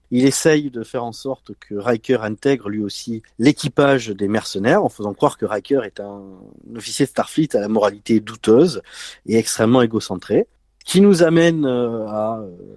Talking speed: 165 wpm